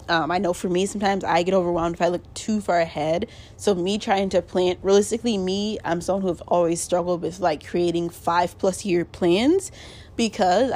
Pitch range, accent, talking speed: 170-200 Hz, American, 200 wpm